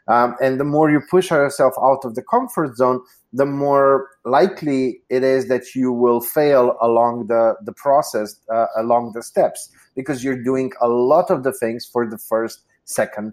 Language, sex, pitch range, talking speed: English, male, 115-135 Hz, 185 wpm